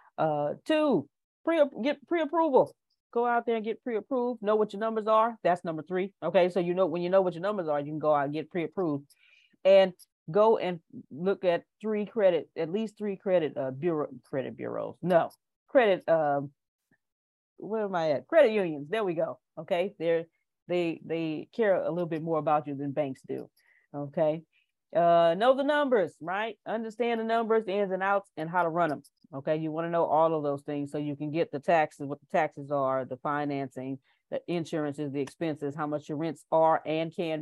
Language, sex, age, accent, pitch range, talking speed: English, female, 30-49, American, 145-195 Hz, 205 wpm